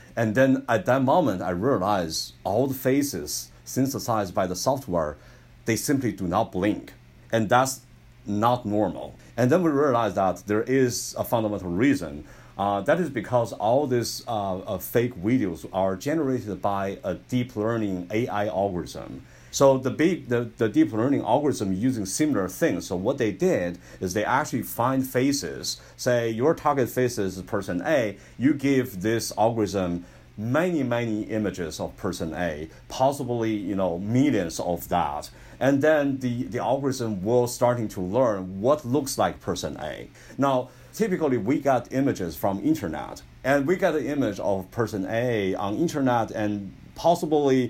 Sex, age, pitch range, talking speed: male, 50-69, 100-130 Hz, 155 wpm